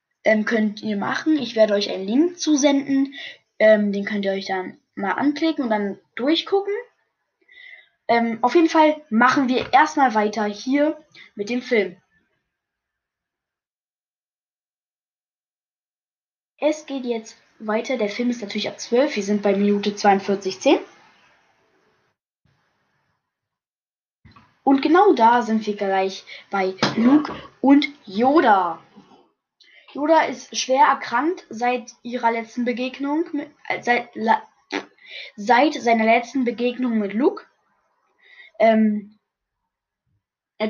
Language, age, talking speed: German, 20-39, 110 wpm